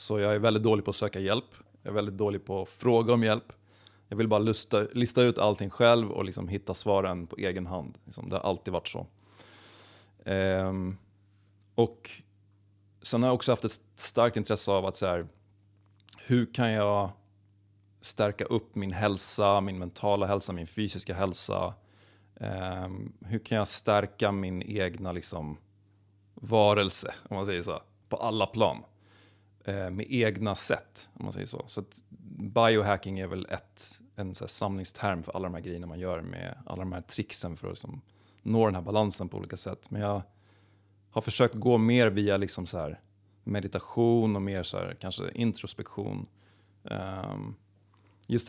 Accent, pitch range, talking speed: native, 95-110 Hz, 165 wpm